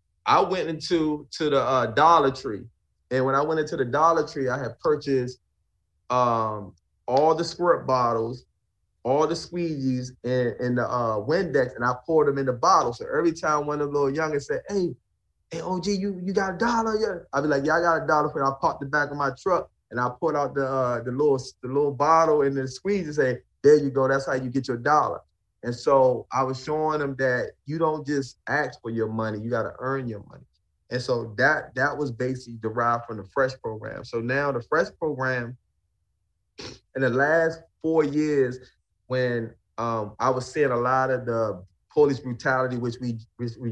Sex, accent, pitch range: male, American, 120-150 Hz